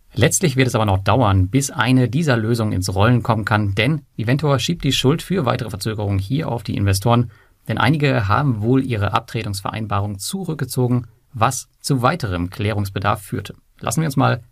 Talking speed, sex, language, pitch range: 175 wpm, male, German, 105-130 Hz